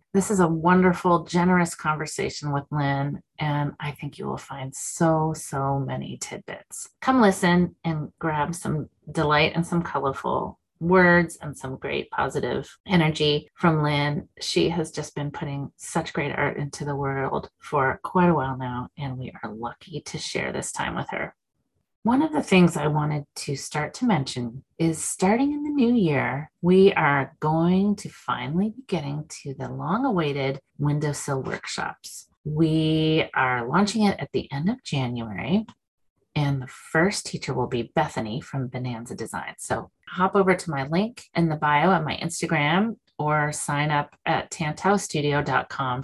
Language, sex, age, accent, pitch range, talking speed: English, female, 30-49, American, 140-180 Hz, 165 wpm